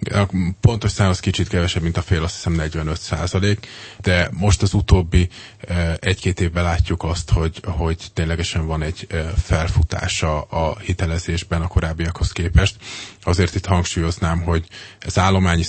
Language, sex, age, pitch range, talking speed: Hungarian, male, 20-39, 80-95 Hz, 140 wpm